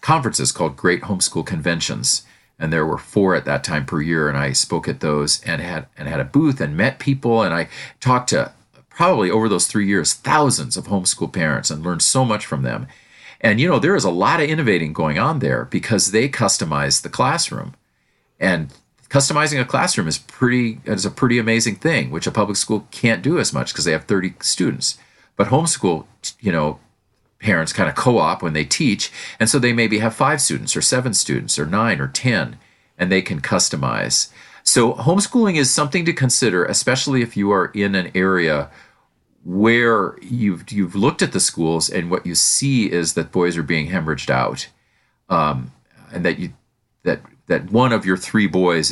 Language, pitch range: English, 85-120 Hz